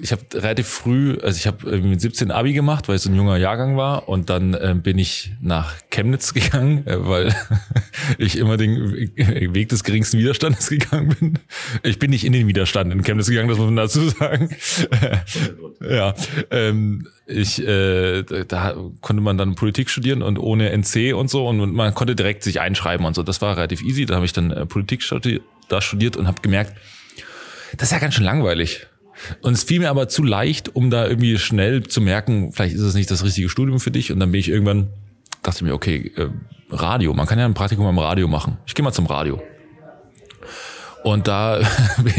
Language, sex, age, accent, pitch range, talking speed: German, male, 30-49, German, 100-125 Hz, 205 wpm